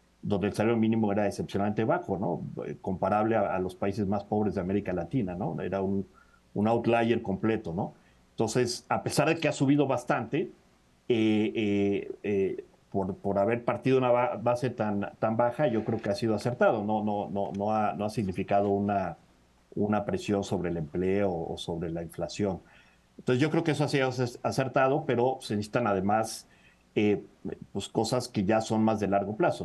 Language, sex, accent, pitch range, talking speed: Spanish, male, Mexican, 95-115 Hz, 185 wpm